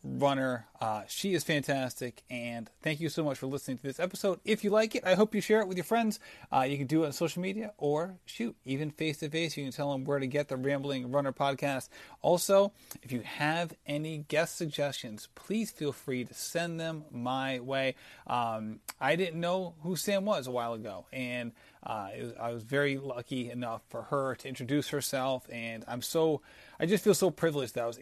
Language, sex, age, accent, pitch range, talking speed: English, male, 30-49, American, 125-160 Hz, 220 wpm